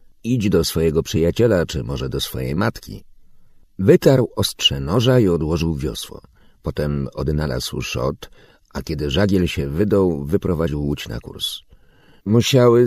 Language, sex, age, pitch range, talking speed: Ukrainian, male, 50-69, 75-105 Hz, 130 wpm